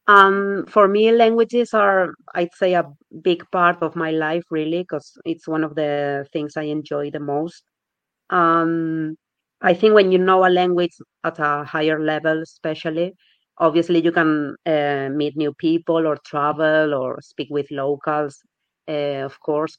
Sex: female